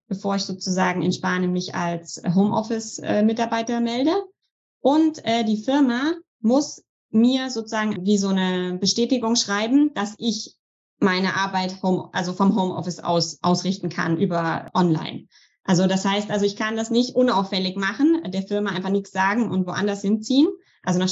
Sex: female